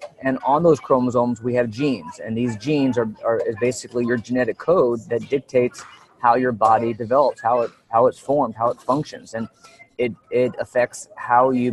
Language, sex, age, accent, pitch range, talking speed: English, male, 30-49, American, 115-135 Hz, 190 wpm